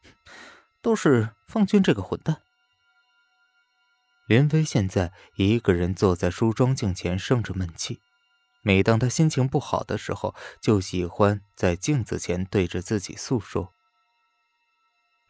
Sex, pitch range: male, 90-125 Hz